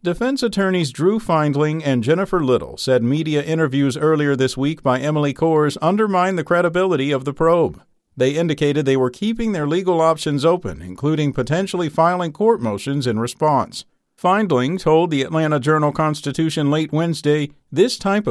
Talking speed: 155 wpm